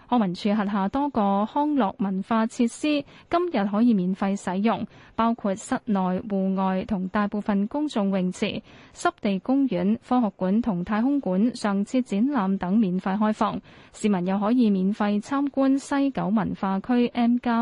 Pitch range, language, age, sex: 190-240 Hz, Chinese, 20-39, female